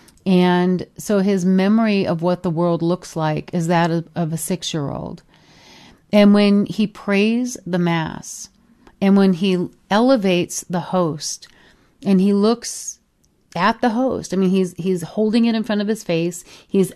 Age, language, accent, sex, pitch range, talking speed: 40-59, English, American, female, 170-205 Hz, 160 wpm